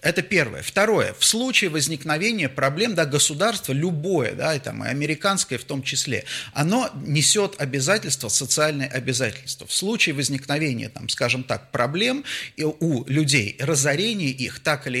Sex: male